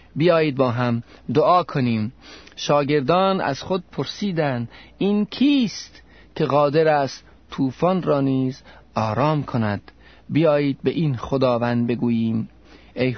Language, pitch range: Persian, 130-165 Hz